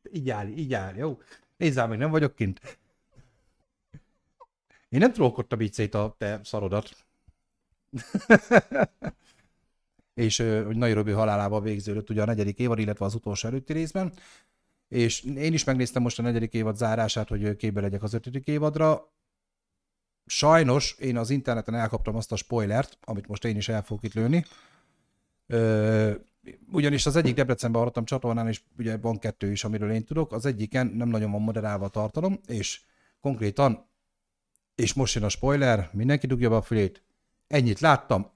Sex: male